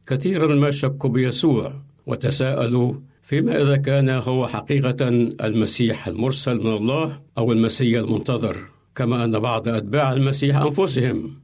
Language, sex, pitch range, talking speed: Arabic, male, 115-140 Hz, 120 wpm